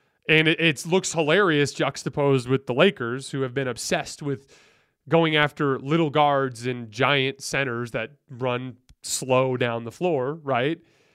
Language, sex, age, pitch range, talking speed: English, male, 20-39, 135-165 Hz, 145 wpm